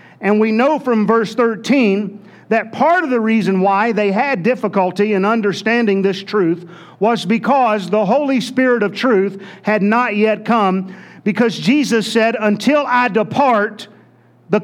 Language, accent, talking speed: English, American, 150 wpm